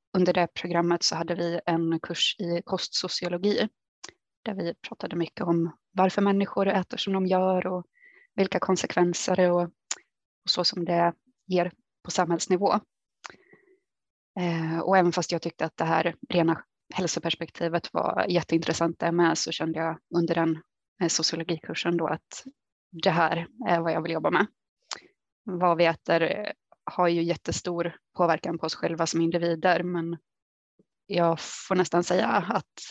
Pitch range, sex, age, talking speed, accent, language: 170-190 Hz, female, 20-39, 145 wpm, native, Swedish